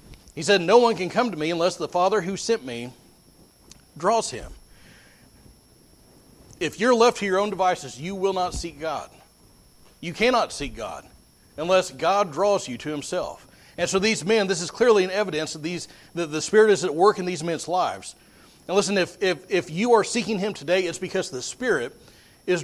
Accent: American